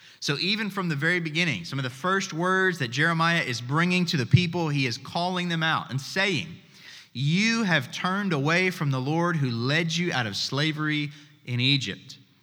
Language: English